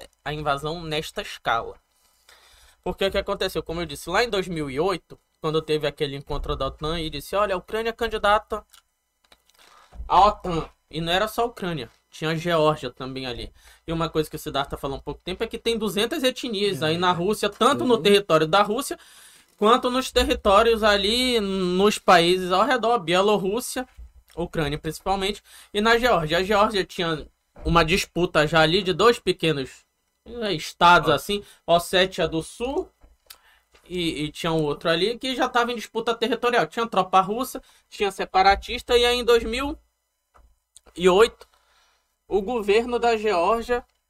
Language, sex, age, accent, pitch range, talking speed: Portuguese, male, 20-39, Brazilian, 165-235 Hz, 160 wpm